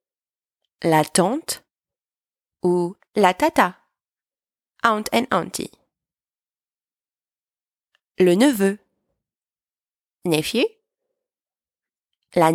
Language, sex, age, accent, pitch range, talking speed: English, female, 30-49, French, 175-275 Hz, 55 wpm